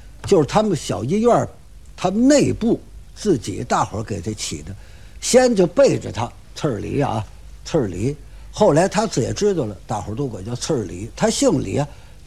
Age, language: 60-79, Chinese